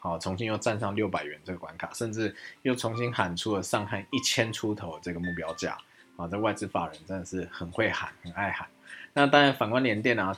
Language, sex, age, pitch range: Chinese, male, 20-39, 90-105 Hz